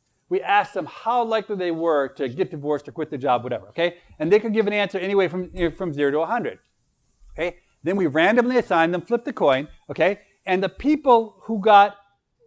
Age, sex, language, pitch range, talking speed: 40-59, male, English, 165-225 Hz, 215 wpm